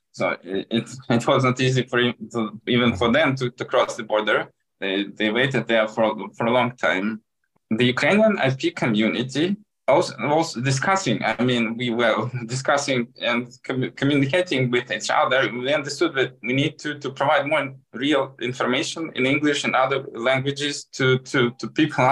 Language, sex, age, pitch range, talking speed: English, male, 20-39, 120-150 Hz, 170 wpm